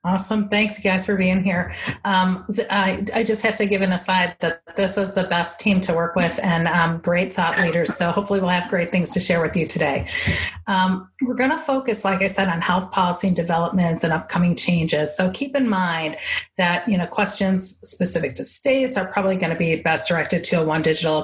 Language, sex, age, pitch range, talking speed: English, female, 40-59, 170-205 Hz, 220 wpm